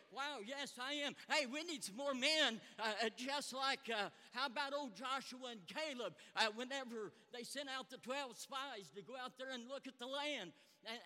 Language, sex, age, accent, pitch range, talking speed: English, male, 50-69, American, 235-295 Hz, 205 wpm